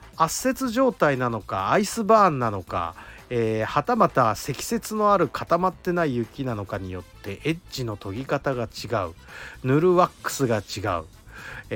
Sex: male